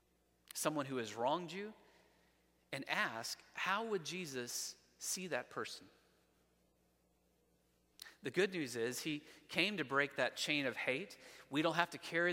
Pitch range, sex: 145-195 Hz, male